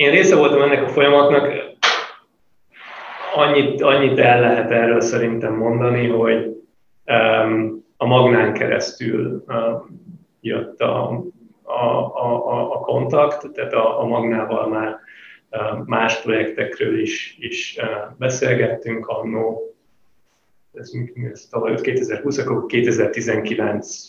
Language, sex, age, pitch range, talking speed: English, male, 30-49, 110-140 Hz, 90 wpm